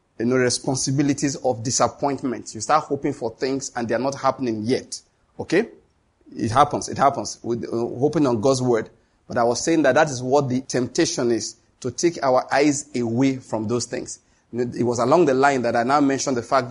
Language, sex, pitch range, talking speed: English, male, 120-145 Hz, 200 wpm